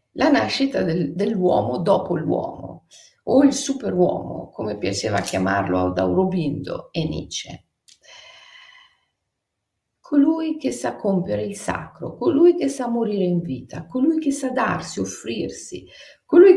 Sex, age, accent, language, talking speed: female, 50-69, native, Italian, 120 wpm